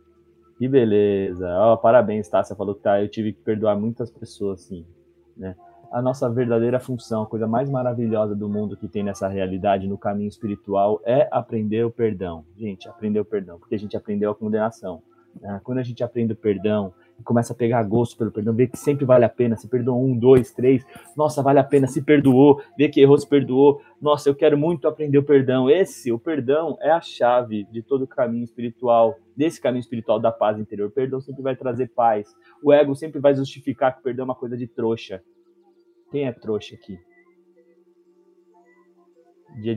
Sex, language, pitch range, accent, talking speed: male, Portuguese, 110-145 Hz, Brazilian, 200 wpm